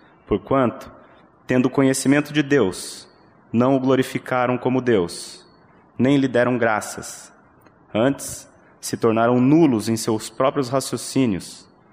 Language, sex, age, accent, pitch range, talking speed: Portuguese, male, 30-49, Brazilian, 115-135 Hz, 110 wpm